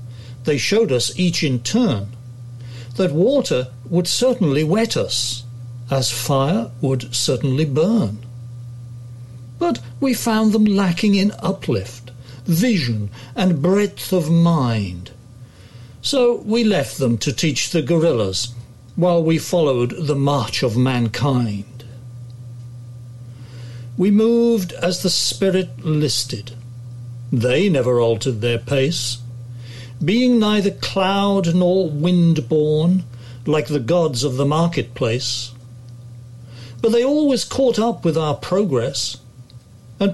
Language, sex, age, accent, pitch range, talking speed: English, male, 60-79, British, 120-175 Hz, 115 wpm